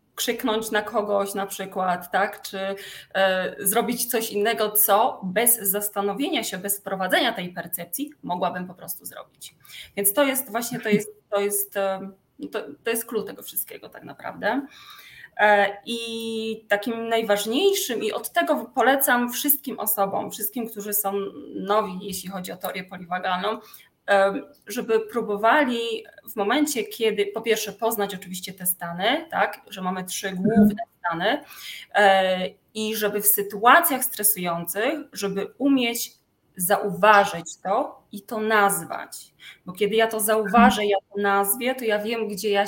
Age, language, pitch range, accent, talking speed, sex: 20-39, Polish, 195-230 Hz, native, 140 wpm, female